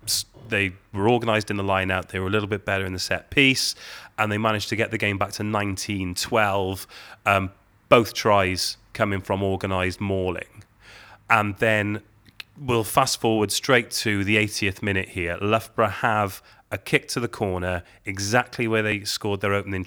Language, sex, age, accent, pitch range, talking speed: English, male, 30-49, British, 95-110 Hz, 175 wpm